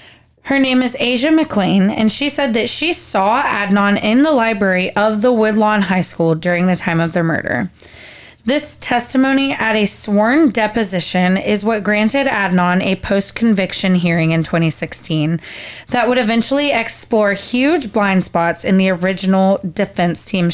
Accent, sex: American, female